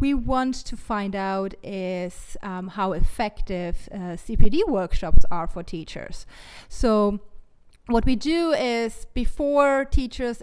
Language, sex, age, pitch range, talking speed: English, female, 30-49, 195-245 Hz, 125 wpm